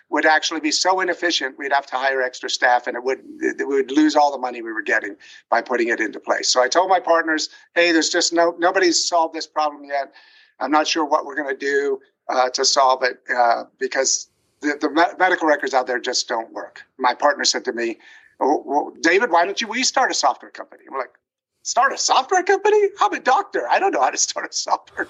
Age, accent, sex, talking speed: 50-69, American, male, 235 wpm